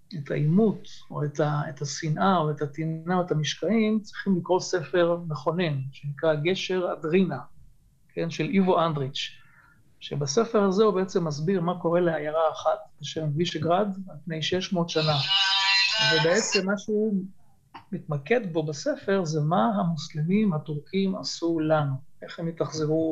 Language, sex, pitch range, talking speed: Hebrew, male, 155-185 Hz, 140 wpm